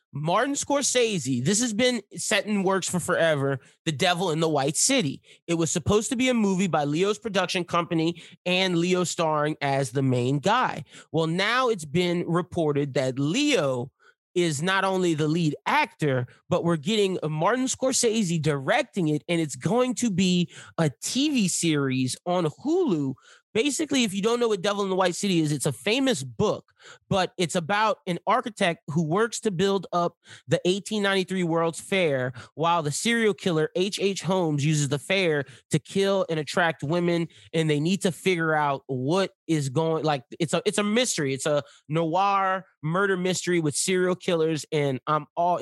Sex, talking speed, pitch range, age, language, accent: male, 175 wpm, 155-195 Hz, 30-49, English, American